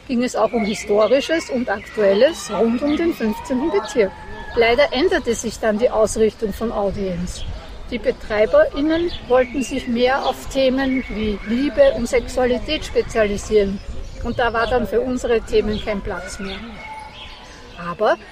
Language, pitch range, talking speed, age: German, 225-305 Hz, 140 wpm, 60-79